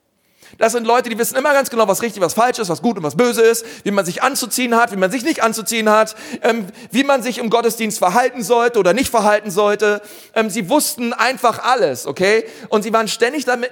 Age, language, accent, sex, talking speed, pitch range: 40-59, German, German, male, 220 wpm, 185-235 Hz